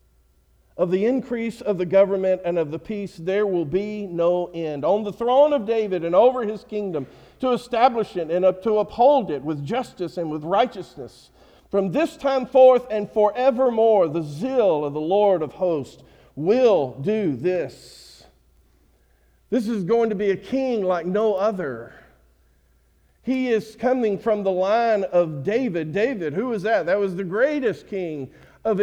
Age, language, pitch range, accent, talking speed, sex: 50-69, English, 155-235 Hz, American, 165 wpm, male